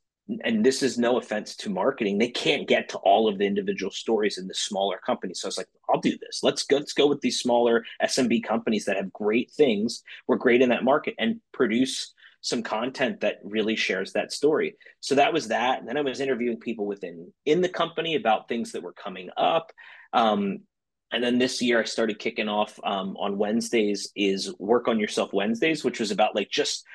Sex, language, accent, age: male, English, American, 30-49